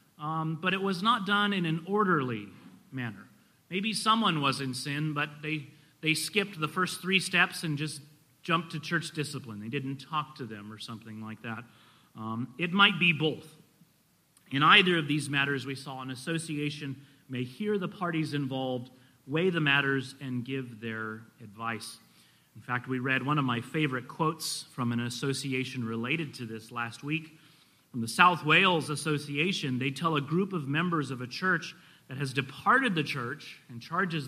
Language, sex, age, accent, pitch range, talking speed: English, male, 30-49, American, 130-180 Hz, 180 wpm